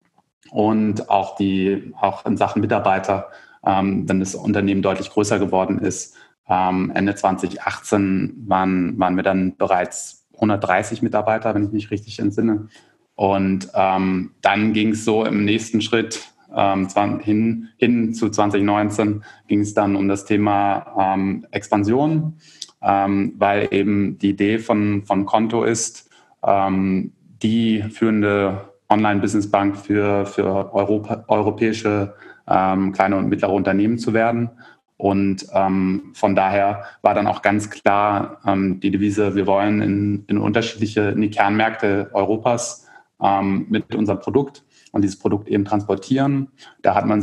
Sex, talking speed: male, 135 wpm